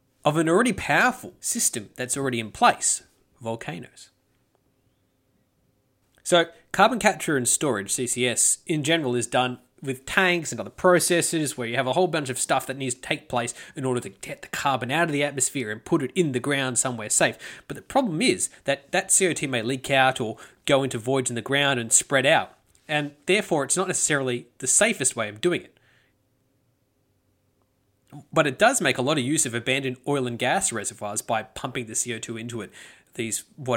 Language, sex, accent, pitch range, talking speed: English, male, Australian, 120-155 Hz, 195 wpm